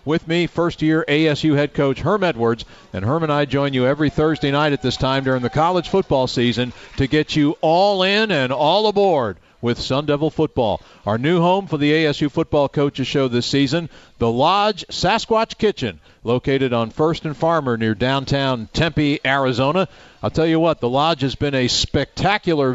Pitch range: 125-160 Hz